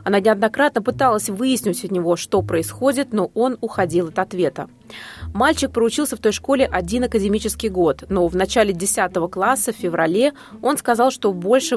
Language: Russian